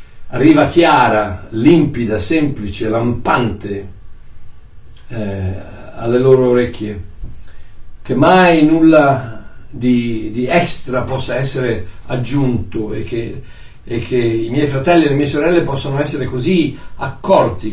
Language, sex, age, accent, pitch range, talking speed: Italian, male, 60-79, native, 110-160 Hz, 110 wpm